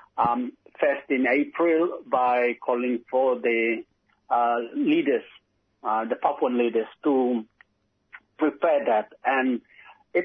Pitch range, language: 125-160 Hz, English